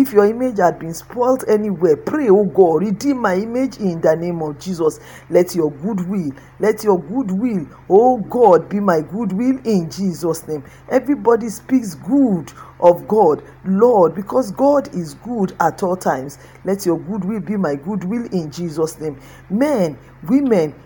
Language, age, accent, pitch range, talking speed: English, 50-69, Nigerian, 170-240 Hz, 165 wpm